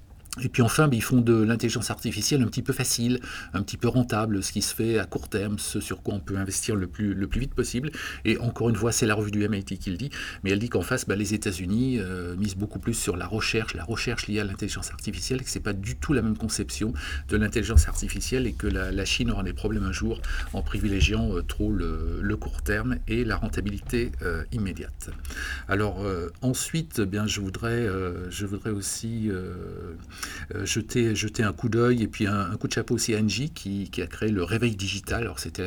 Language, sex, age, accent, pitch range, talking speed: French, male, 50-69, French, 90-115 Hz, 225 wpm